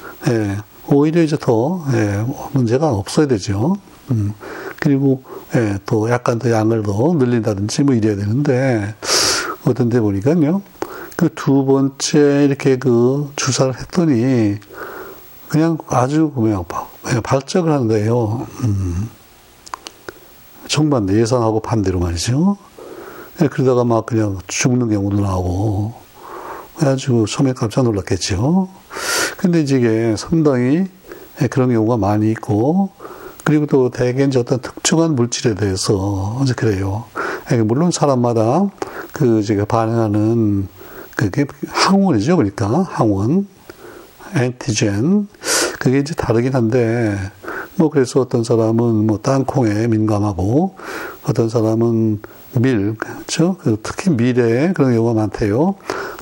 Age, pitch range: 60-79, 110-150 Hz